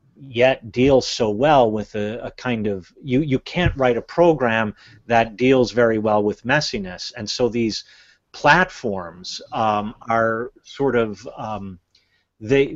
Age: 40-59